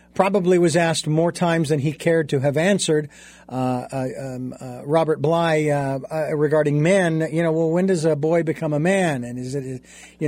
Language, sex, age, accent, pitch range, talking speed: English, male, 50-69, American, 145-190 Hz, 205 wpm